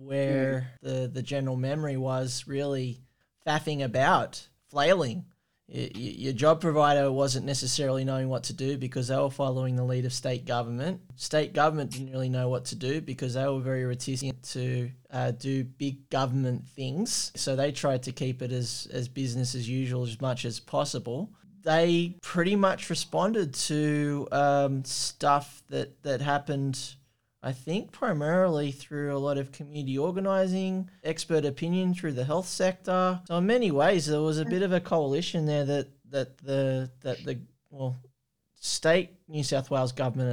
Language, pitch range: English, 130-150 Hz